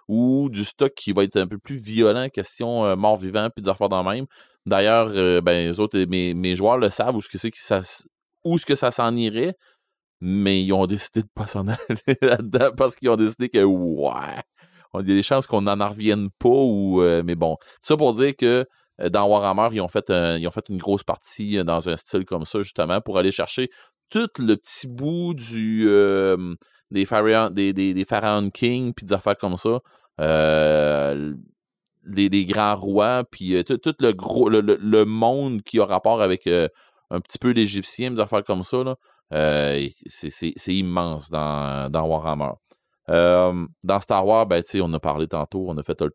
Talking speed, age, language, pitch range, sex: 210 wpm, 30-49, French, 90-115 Hz, male